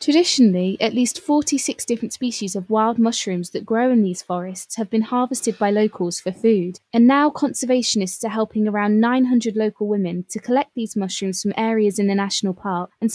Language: English